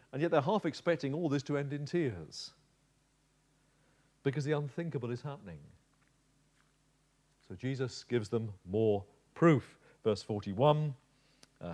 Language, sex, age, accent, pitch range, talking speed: English, male, 40-59, British, 120-155 Hz, 125 wpm